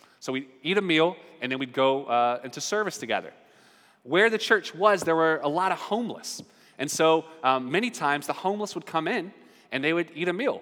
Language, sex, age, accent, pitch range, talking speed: English, male, 30-49, American, 160-225 Hz, 220 wpm